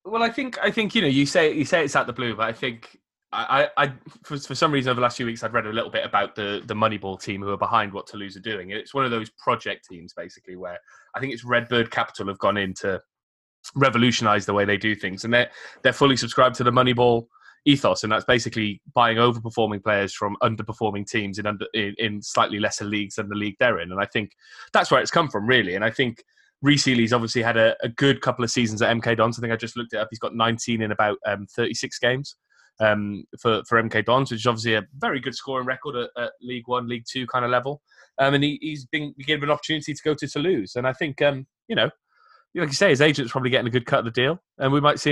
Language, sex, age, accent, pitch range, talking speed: English, male, 20-39, British, 110-135 Hz, 265 wpm